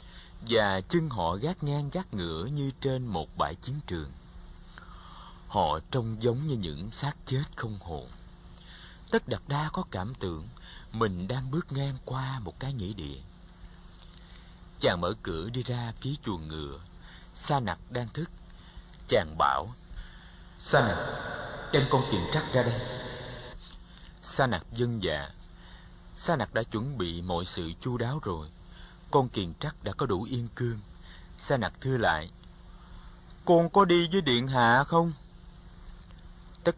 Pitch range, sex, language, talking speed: 90-130 Hz, male, Vietnamese, 150 wpm